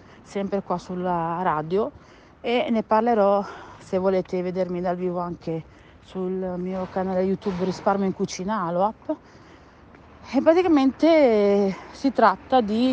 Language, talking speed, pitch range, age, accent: Italian, 125 wpm, 175-230 Hz, 40-59, native